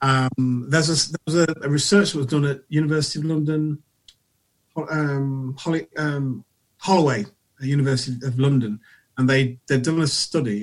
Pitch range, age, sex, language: 120-145 Hz, 30-49, male, English